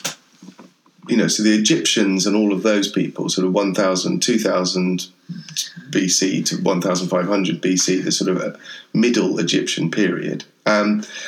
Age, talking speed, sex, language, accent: 30-49, 140 wpm, male, English, British